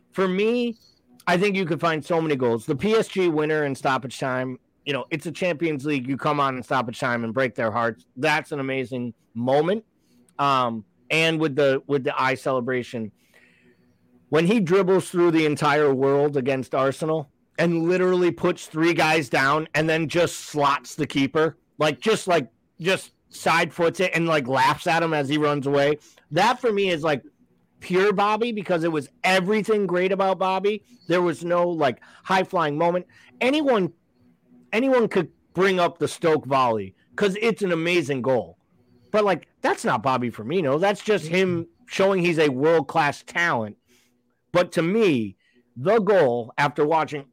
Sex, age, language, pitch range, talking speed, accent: male, 30-49, English, 135-180 Hz, 175 wpm, American